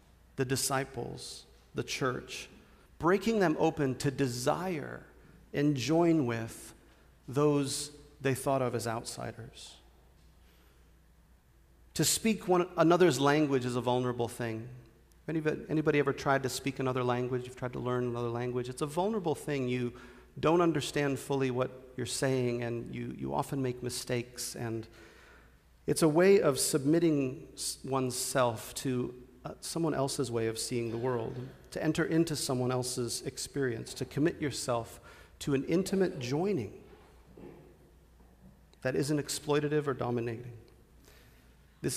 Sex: male